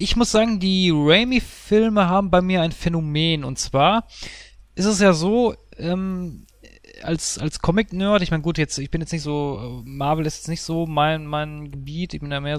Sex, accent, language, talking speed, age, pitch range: male, German, German, 210 wpm, 30-49, 140-195 Hz